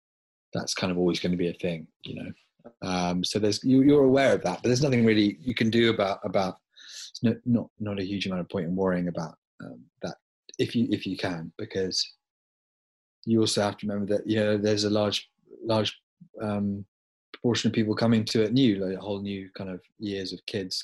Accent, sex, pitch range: British, male, 95-115 Hz